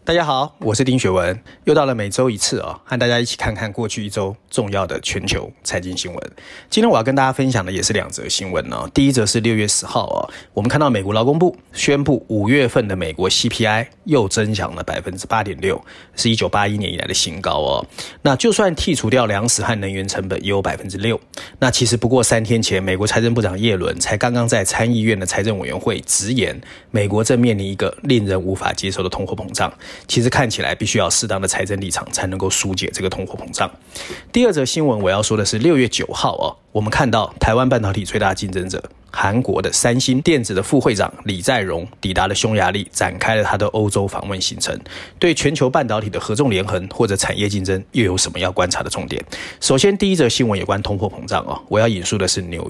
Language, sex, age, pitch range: Chinese, male, 20-39, 95-120 Hz